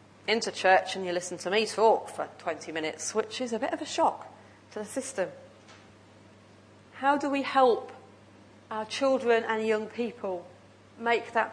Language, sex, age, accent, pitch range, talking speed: English, female, 40-59, British, 165-260 Hz, 165 wpm